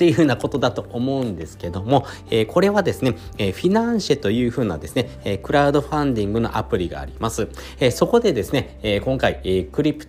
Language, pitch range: Japanese, 95-145 Hz